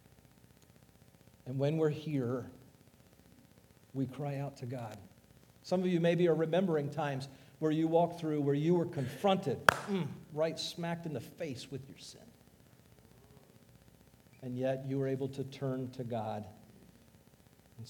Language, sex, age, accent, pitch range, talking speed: English, male, 50-69, American, 125-155 Hz, 140 wpm